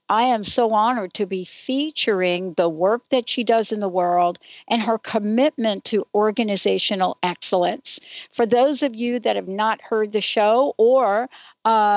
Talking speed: 165 wpm